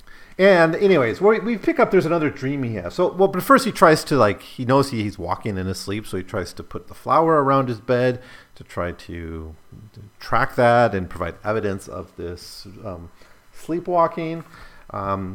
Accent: American